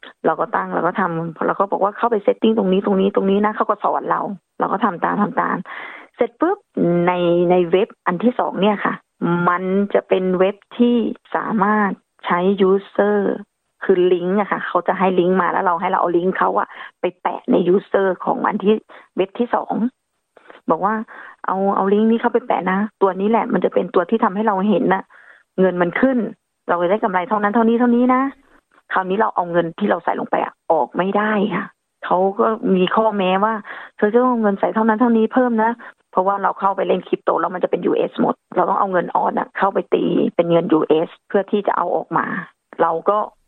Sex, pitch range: female, 185-225 Hz